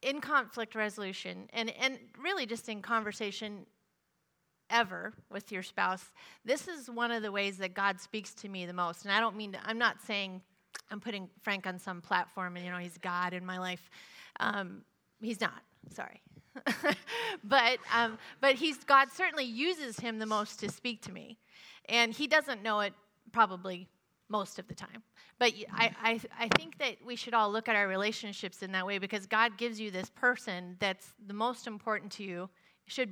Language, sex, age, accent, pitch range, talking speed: English, female, 30-49, American, 190-230 Hz, 190 wpm